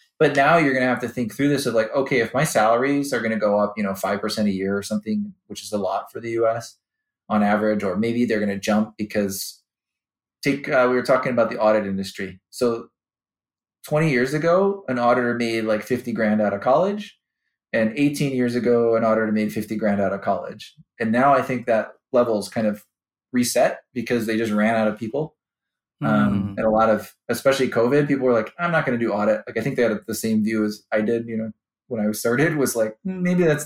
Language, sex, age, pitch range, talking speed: English, male, 20-39, 110-140 Hz, 235 wpm